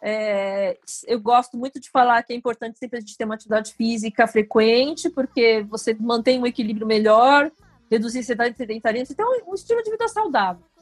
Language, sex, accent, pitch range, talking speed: Portuguese, female, Brazilian, 225-275 Hz, 190 wpm